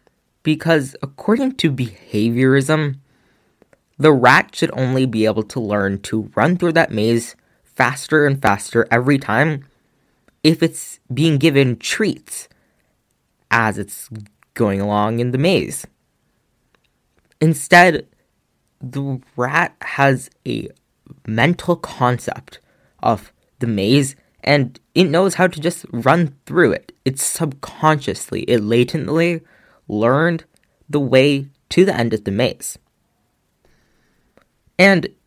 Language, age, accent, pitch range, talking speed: English, 20-39, American, 120-165 Hz, 115 wpm